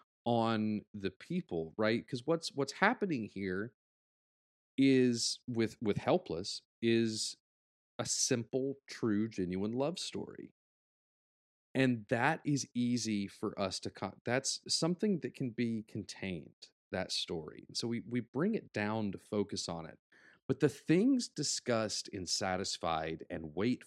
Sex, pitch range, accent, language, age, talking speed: male, 95-130 Hz, American, English, 30-49, 135 wpm